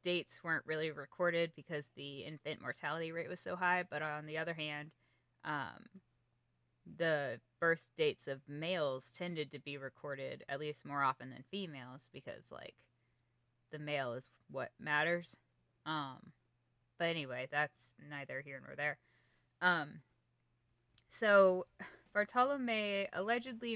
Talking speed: 130 wpm